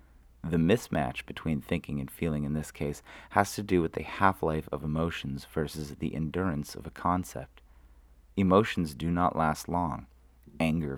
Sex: male